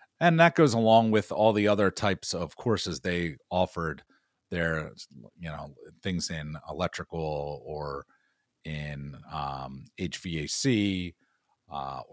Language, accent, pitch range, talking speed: English, American, 80-105 Hz, 120 wpm